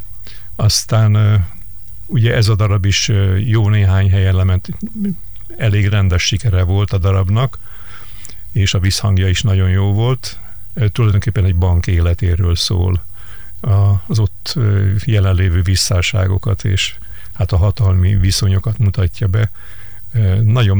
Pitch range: 95-110 Hz